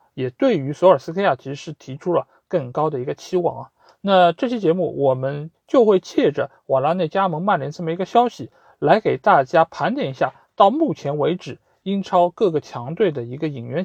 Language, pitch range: Chinese, 145-200 Hz